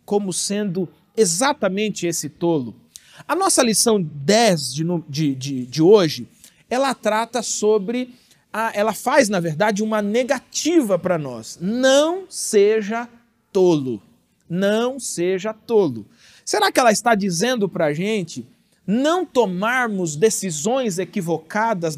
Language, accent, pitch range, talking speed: Portuguese, Brazilian, 175-235 Hz, 110 wpm